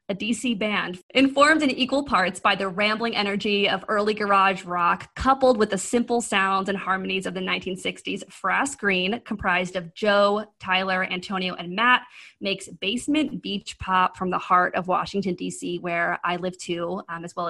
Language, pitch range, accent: English, 185-245 Hz, American